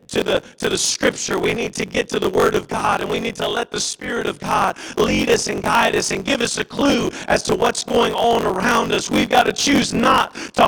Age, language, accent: 50-69, English, American